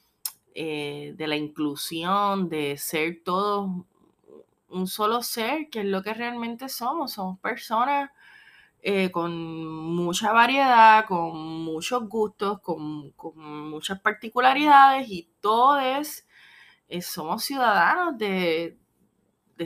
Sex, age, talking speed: female, 20-39, 105 wpm